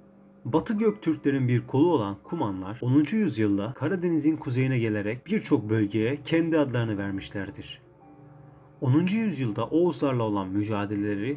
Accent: native